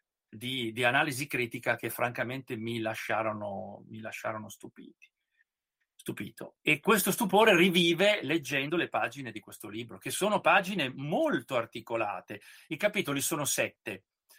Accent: native